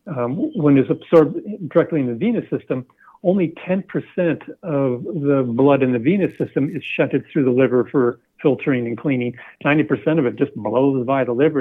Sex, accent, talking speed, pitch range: male, American, 180 wpm, 120-150 Hz